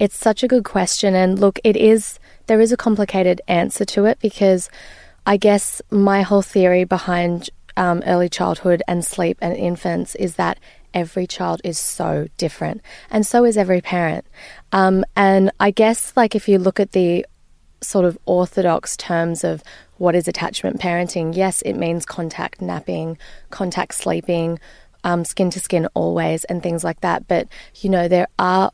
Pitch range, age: 170-200 Hz, 20-39